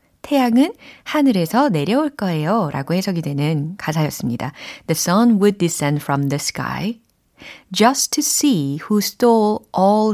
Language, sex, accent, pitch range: Korean, female, native, 155-235 Hz